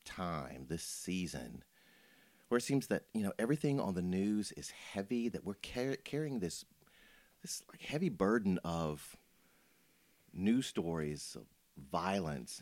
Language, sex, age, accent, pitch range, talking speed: English, male, 40-59, American, 80-100 Hz, 135 wpm